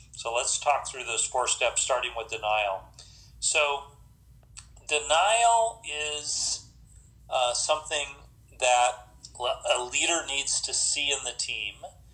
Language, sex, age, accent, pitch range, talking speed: English, male, 40-59, American, 120-140 Hz, 120 wpm